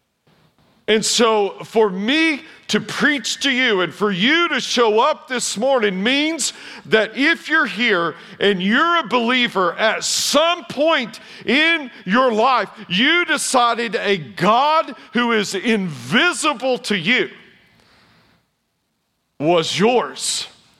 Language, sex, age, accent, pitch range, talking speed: English, male, 50-69, American, 205-275 Hz, 120 wpm